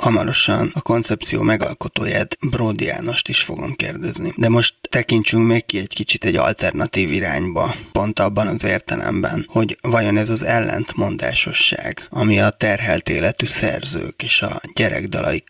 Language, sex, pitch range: Hungarian, male, 110-115 Hz